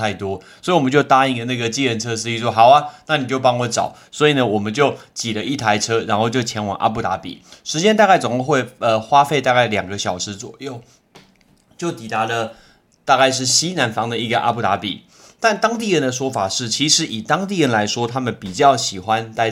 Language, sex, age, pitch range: Chinese, male, 20-39, 110-150 Hz